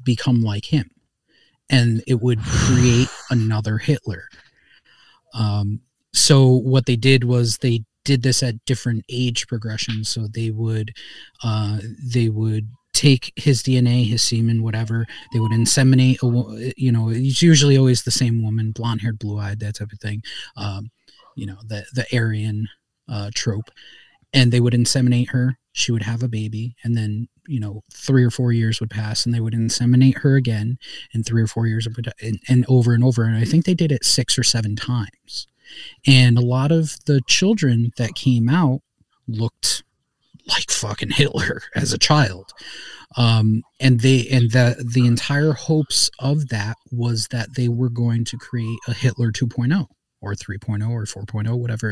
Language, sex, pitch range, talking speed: English, male, 110-130 Hz, 170 wpm